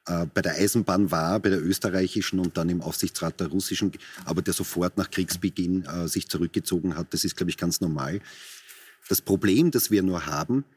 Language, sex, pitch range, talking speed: German, male, 95-105 Hz, 190 wpm